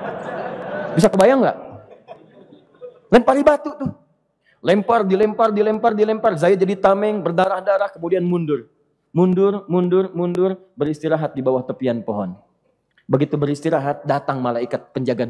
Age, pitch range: 30-49, 120-170 Hz